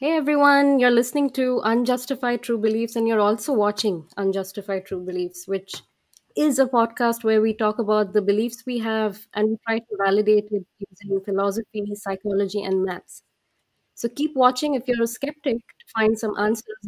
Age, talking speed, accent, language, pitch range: 20-39, 175 wpm, Indian, English, 200-245 Hz